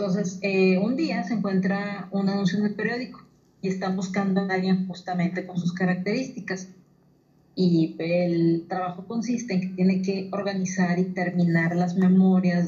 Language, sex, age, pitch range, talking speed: Spanish, female, 40-59, 170-195 Hz, 155 wpm